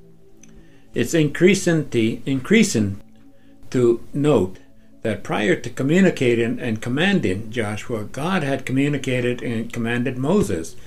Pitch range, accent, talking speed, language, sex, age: 105-130 Hz, American, 105 wpm, English, male, 60-79